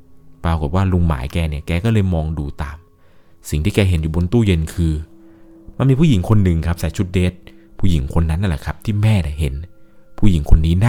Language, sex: Thai, male